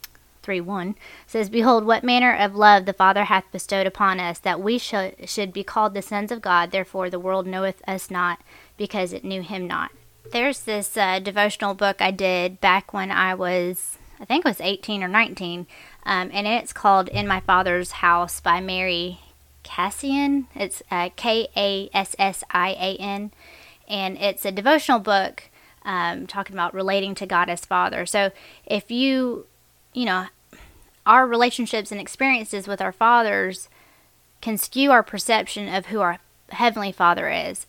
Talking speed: 160 wpm